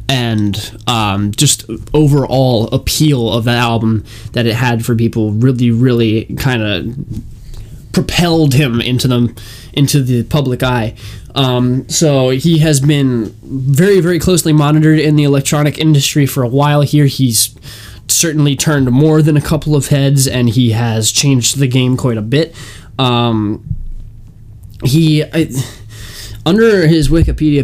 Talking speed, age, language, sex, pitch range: 140 wpm, 20-39, English, male, 115-145 Hz